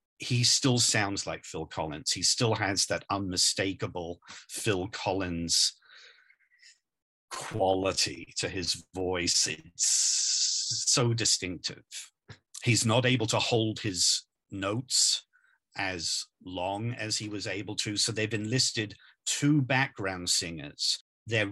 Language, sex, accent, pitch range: English, male, British, 95-115 Hz